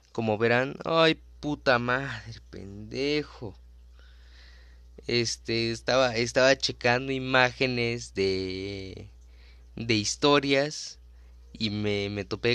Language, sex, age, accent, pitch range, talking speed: Spanish, male, 20-39, Mexican, 90-130 Hz, 85 wpm